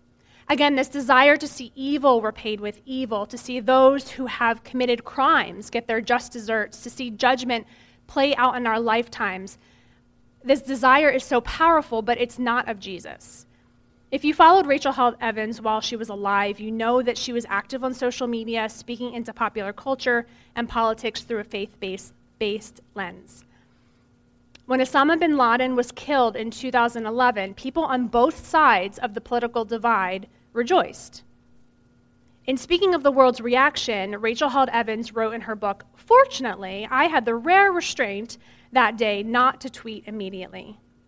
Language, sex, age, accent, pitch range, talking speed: English, female, 30-49, American, 205-260 Hz, 160 wpm